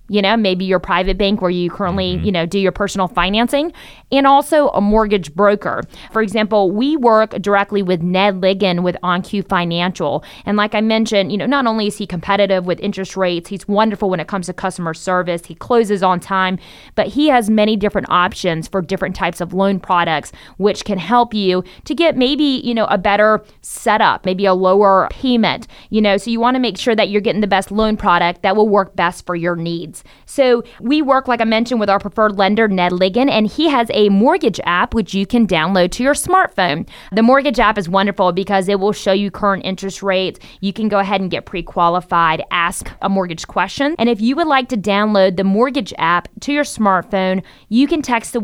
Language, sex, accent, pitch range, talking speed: English, female, American, 185-225 Hz, 215 wpm